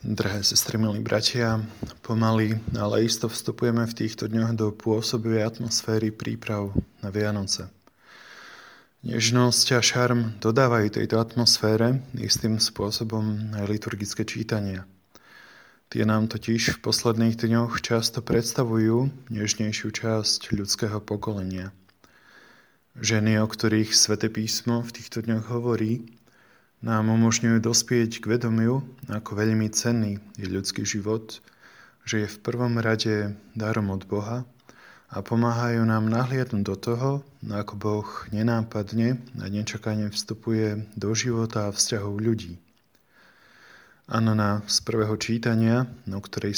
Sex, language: male, Slovak